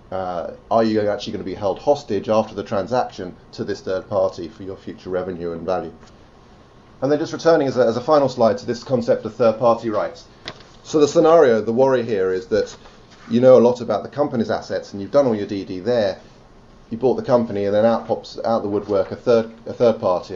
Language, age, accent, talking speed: English, 30-49, British, 225 wpm